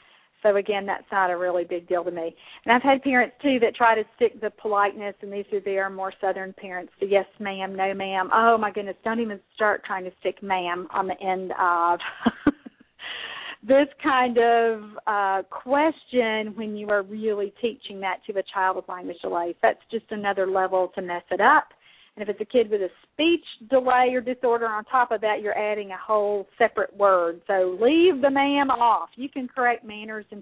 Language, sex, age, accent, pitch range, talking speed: English, female, 40-59, American, 190-230 Hz, 205 wpm